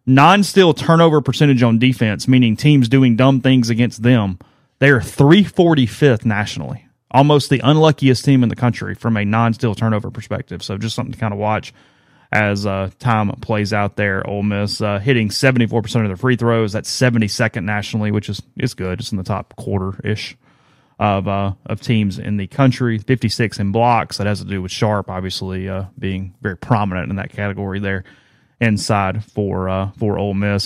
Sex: male